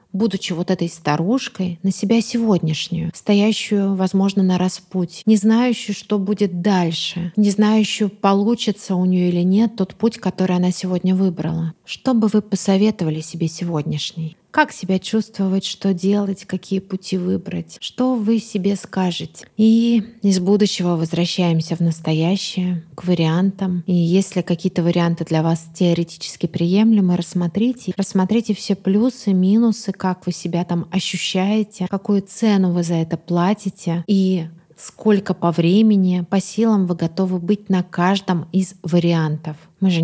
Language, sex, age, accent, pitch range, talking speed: Russian, female, 30-49, native, 175-200 Hz, 140 wpm